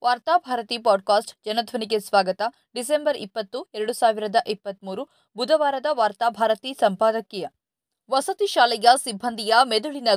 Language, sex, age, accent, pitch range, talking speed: Kannada, female, 20-39, native, 200-265 Hz, 95 wpm